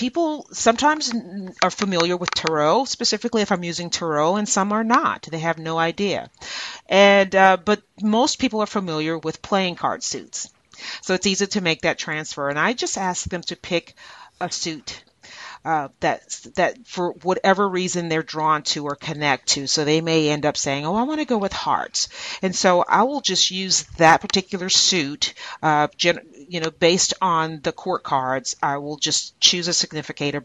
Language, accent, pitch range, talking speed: English, American, 155-200 Hz, 185 wpm